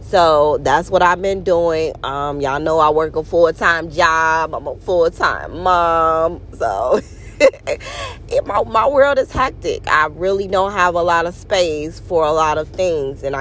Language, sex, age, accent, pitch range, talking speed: English, female, 20-39, American, 145-180 Hz, 170 wpm